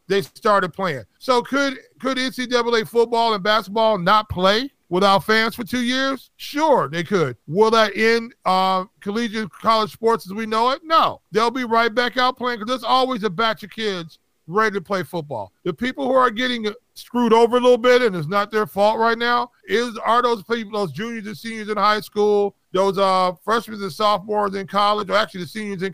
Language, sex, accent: English, male, American